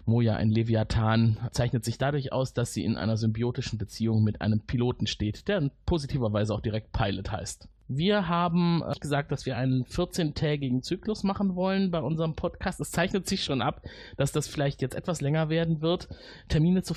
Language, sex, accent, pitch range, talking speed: German, male, German, 125-175 Hz, 185 wpm